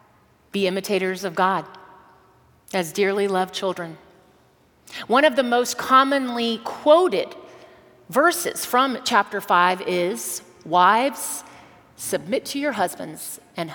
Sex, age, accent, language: female, 30-49, American, English